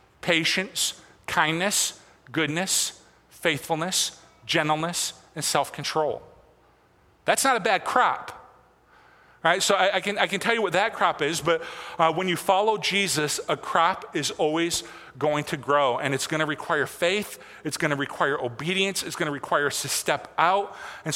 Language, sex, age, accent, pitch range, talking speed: English, male, 40-59, American, 150-200 Hz, 165 wpm